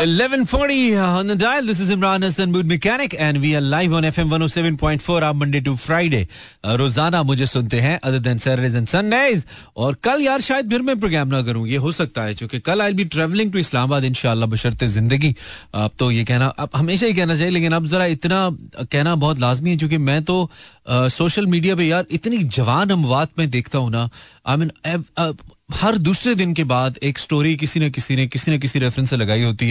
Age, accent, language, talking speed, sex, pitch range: 30-49, native, Hindi, 220 wpm, male, 125-170 Hz